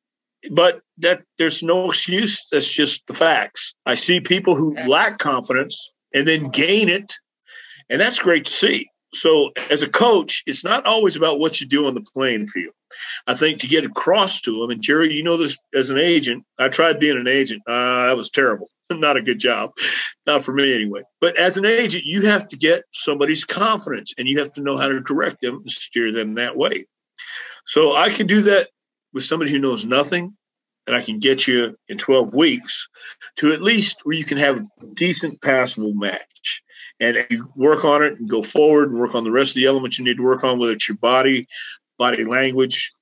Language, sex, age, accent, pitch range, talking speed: English, male, 50-69, American, 130-205 Hz, 210 wpm